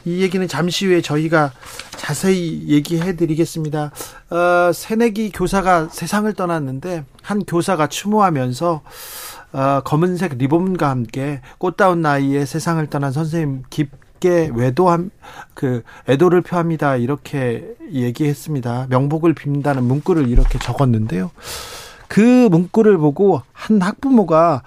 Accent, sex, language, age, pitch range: native, male, Korean, 40-59, 135-185 Hz